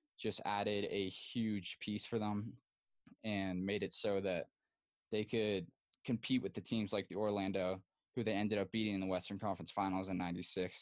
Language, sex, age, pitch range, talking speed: English, male, 10-29, 100-115 Hz, 185 wpm